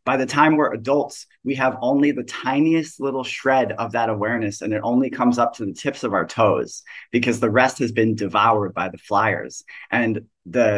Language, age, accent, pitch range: English, 30-49, American, 110-130 Hz